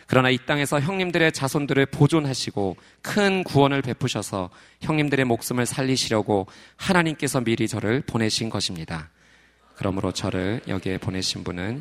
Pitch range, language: 95-130 Hz, Korean